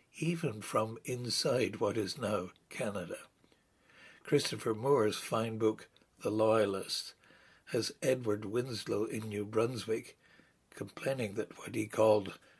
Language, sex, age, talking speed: English, male, 60-79, 115 wpm